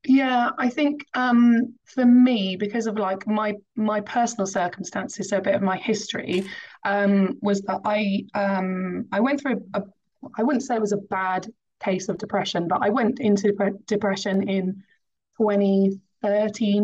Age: 20-39